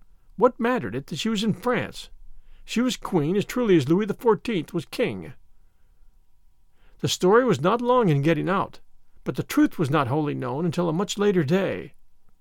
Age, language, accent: 50-69, English, American